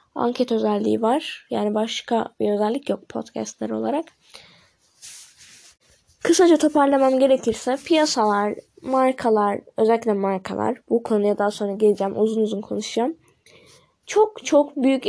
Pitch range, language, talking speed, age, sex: 220-280 Hz, Turkish, 110 wpm, 10-29, female